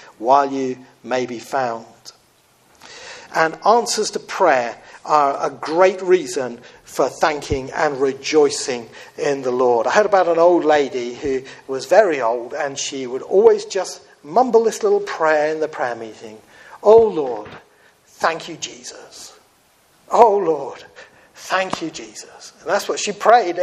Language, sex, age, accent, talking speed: English, male, 50-69, British, 145 wpm